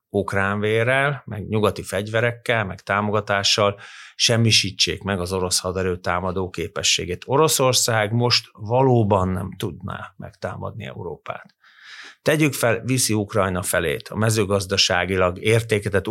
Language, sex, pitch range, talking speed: Hungarian, male, 95-120 Hz, 105 wpm